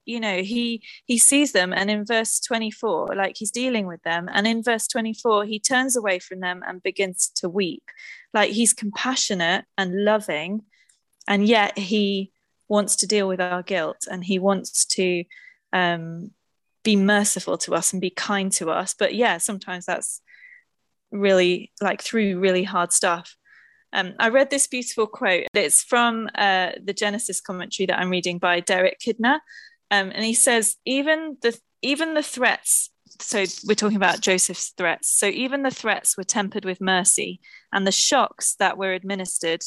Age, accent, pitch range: 20-39, British, 185-230 Hz